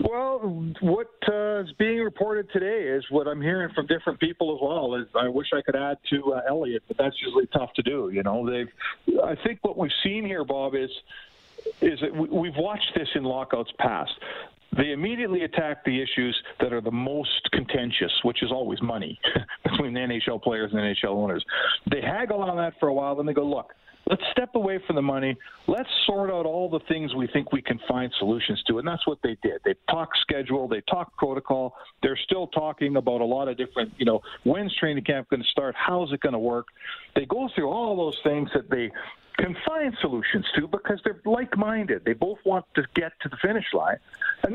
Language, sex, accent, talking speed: English, male, American, 215 wpm